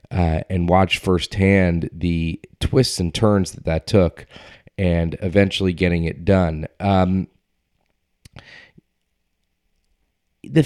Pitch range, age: 90-110 Hz, 30-49